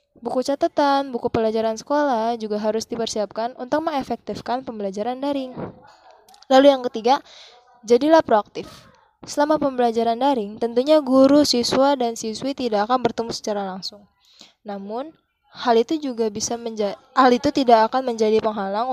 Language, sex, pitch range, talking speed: Indonesian, female, 215-255 Hz, 135 wpm